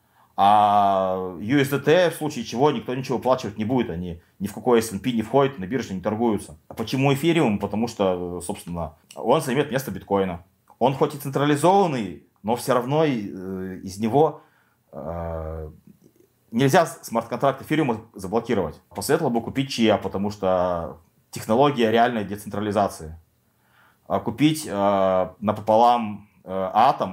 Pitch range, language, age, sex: 95-120 Hz, Russian, 30-49, male